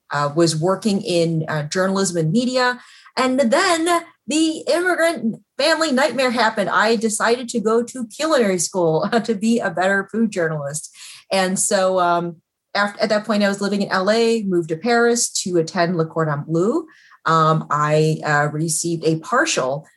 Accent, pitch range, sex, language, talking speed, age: American, 155-210 Hz, female, English, 160 wpm, 30-49